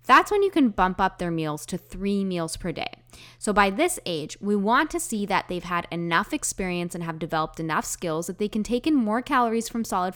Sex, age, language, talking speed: female, 10-29, English, 235 wpm